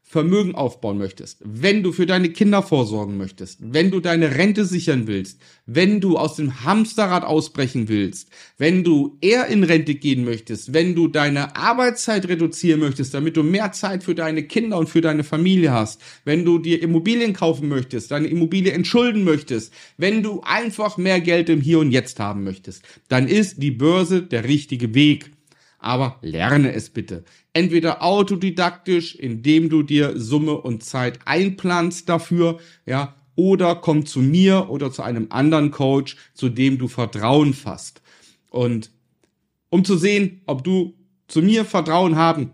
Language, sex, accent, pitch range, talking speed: German, male, German, 135-180 Hz, 160 wpm